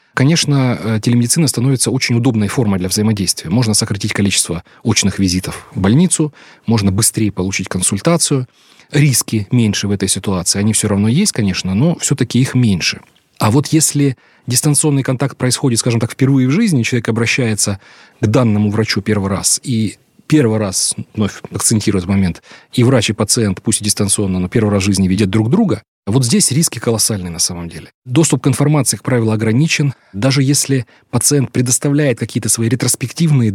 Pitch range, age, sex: 105-135 Hz, 30-49, male